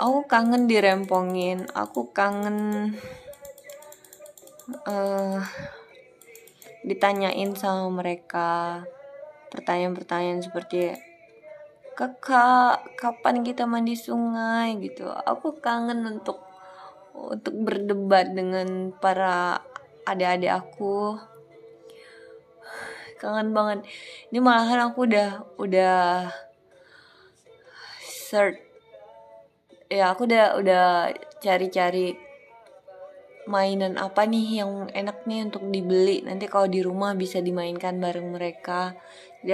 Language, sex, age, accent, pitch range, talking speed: Indonesian, female, 20-39, native, 180-235 Hz, 85 wpm